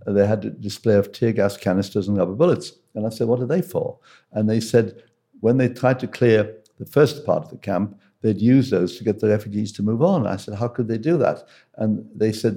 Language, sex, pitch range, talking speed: English, male, 100-120 Hz, 250 wpm